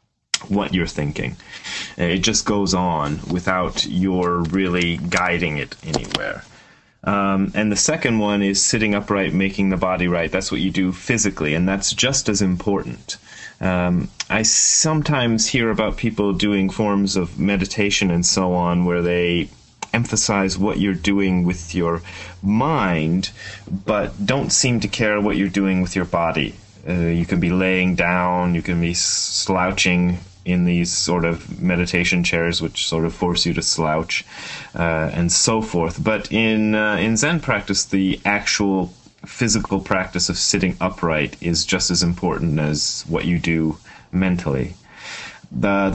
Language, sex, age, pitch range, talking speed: English, male, 30-49, 85-100 Hz, 155 wpm